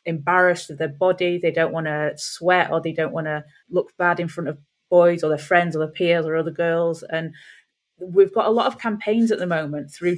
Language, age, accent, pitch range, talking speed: English, 30-49, British, 160-185 Hz, 235 wpm